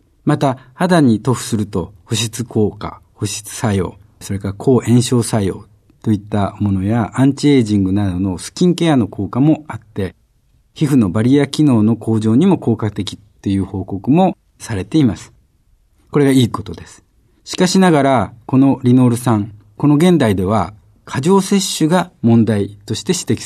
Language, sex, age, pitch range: Japanese, male, 50-69, 100-130 Hz